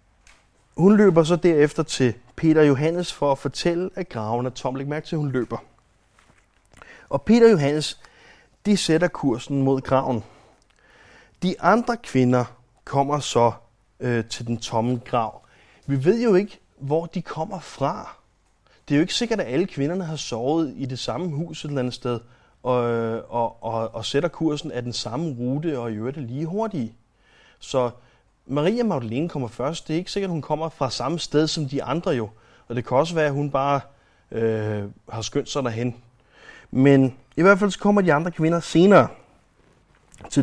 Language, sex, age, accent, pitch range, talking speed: Danish, male, 30-49, native, 120-170 Hz, 180 wpm